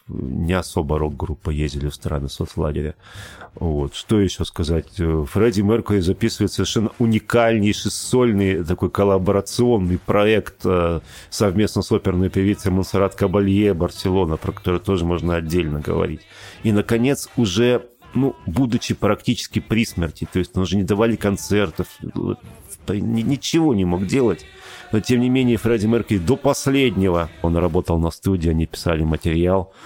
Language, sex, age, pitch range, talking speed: Russian, male, 40-59, 80-105 Hz, 135 wpm